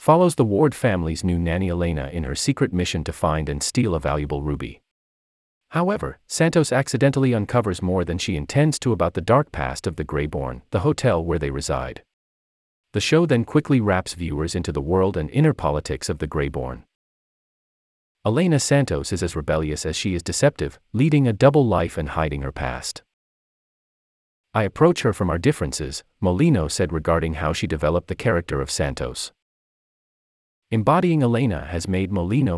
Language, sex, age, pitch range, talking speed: English, male, 40-59, 75-110 Hz, 170 wpm